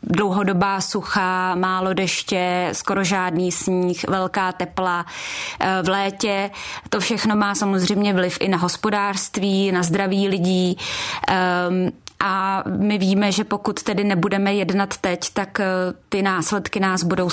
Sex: female